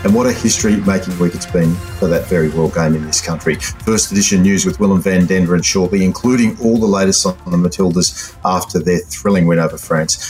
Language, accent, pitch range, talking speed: English, Australian, 80-95 Hz, 215 wpm